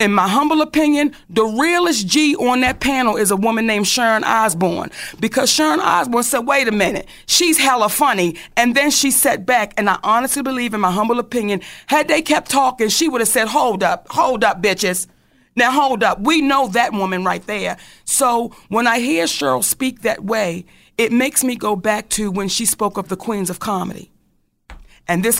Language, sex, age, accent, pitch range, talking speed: English, female, 40-59, American, 200-260 Hz, 200 wpm